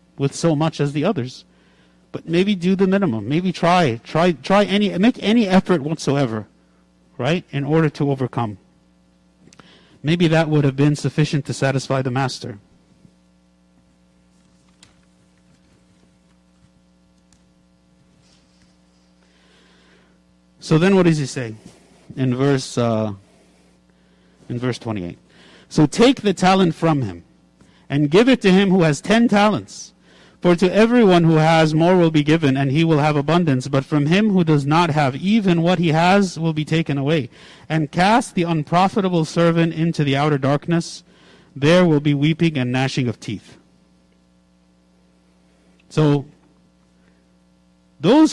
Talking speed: 135 wpm